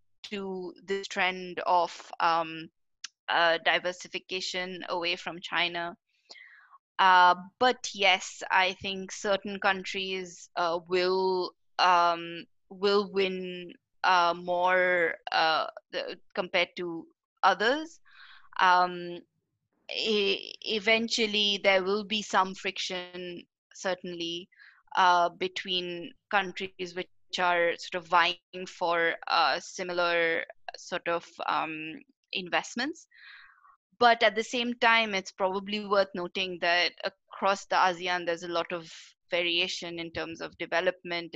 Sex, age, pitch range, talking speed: female, 20-39, 170-195 Hz, 105 wpm